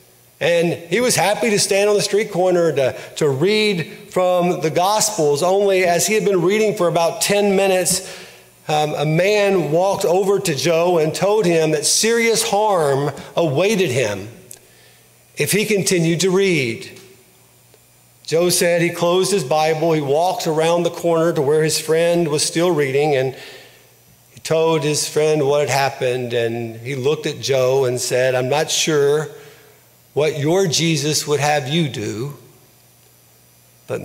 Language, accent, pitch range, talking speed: English, American, 145-195 Hz, 160 wpm